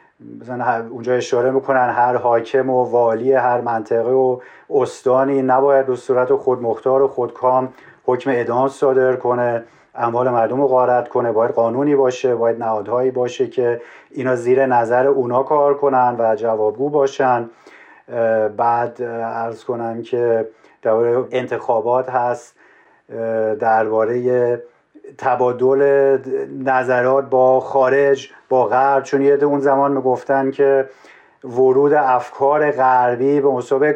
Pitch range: 120-135 Hz